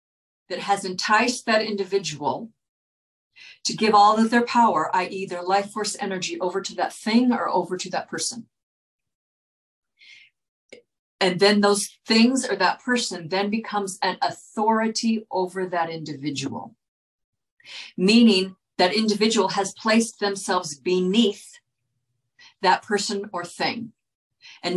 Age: 50-69